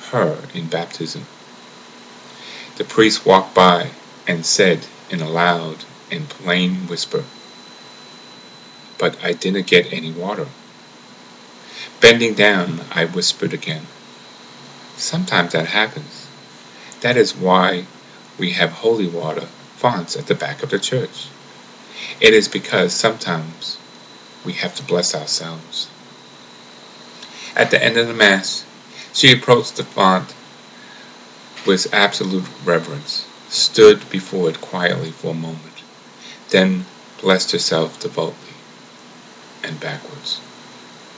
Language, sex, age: English, male, 50-69